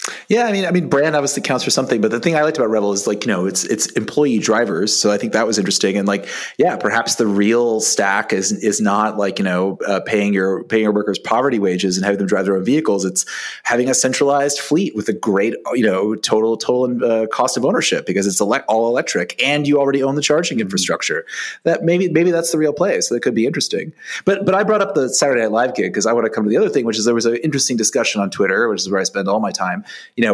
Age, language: 30-49, English